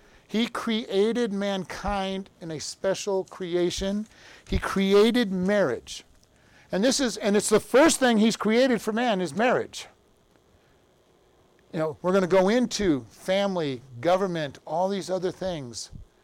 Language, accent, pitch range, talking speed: English, American, 165-205 Hz, 135 wpm